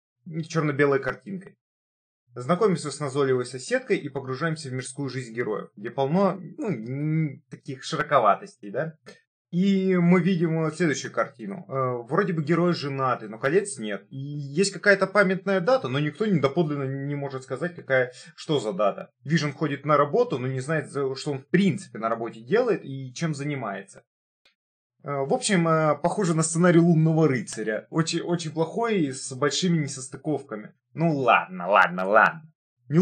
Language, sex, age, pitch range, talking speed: Russian, male, 20-39, 130-175 Hz, 150 wpm